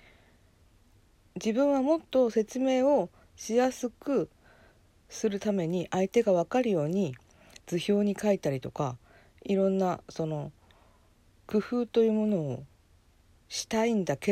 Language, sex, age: Japanese, female, 50-69